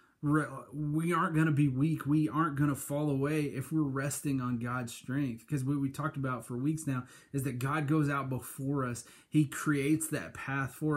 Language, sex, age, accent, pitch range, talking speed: English, male, 30-49, American, 120-140 Hz, 210 wpm